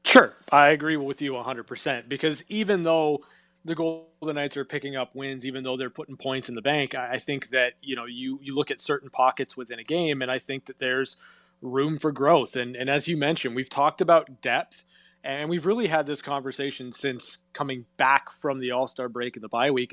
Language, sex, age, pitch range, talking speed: English, male, 20-39, 130-160 Hz, 225 wpm